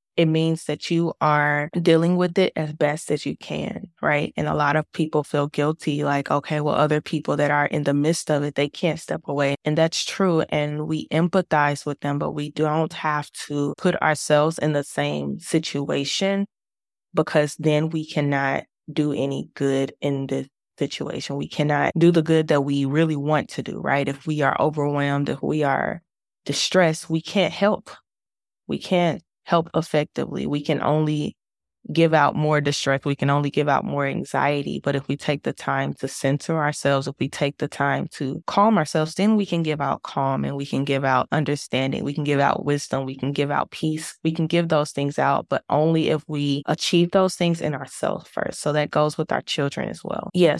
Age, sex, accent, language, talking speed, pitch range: 20-39, female, American, English, 205 wpm, 140-160 Hz